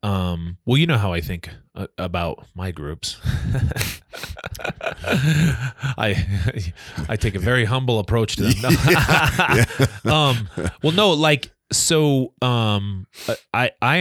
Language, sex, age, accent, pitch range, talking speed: English, male, 30-49, American, 85-110 Hz, 110 wpm